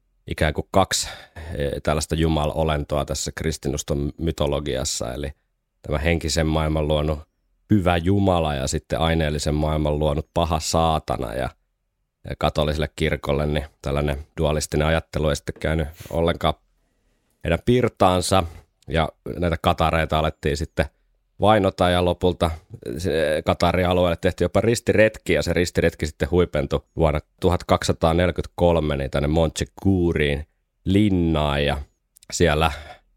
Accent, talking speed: native, 110 wpm